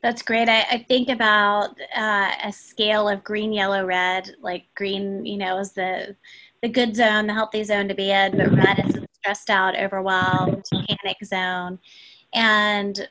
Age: 20-39